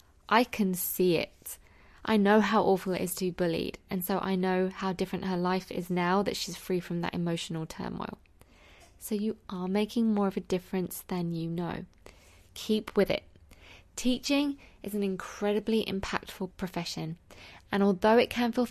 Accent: British